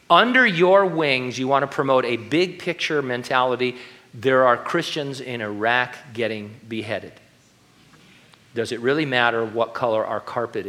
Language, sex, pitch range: English, male, 120-165 Hz